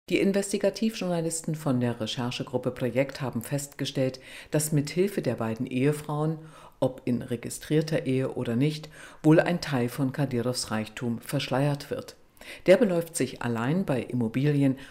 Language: German